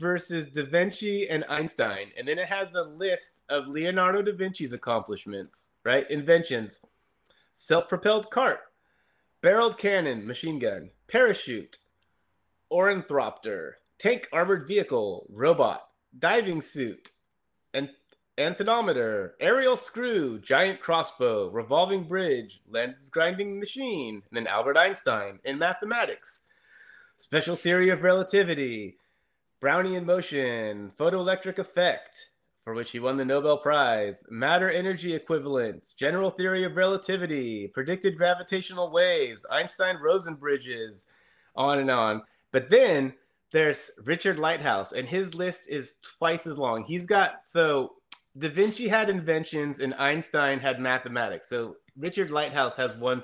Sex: male